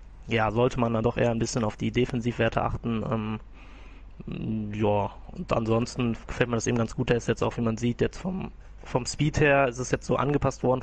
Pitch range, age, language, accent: 115-135 Hz, 20-39, German, German